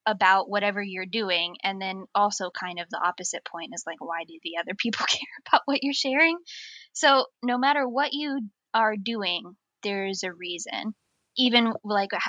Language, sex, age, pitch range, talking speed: English, female, 10-29, 185-235 Hz, 175 wpm